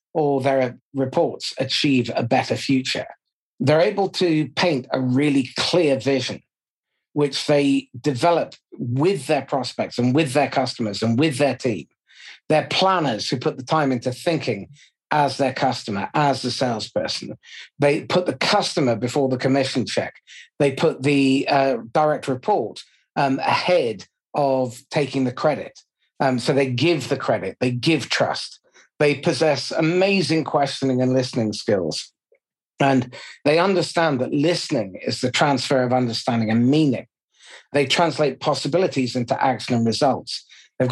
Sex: male